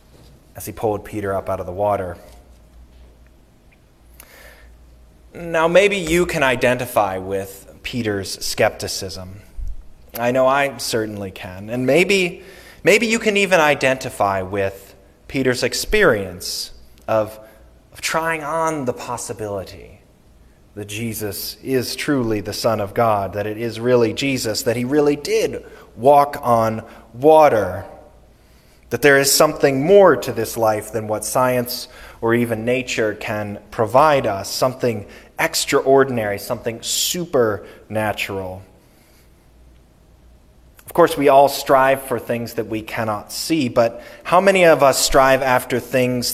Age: 20-39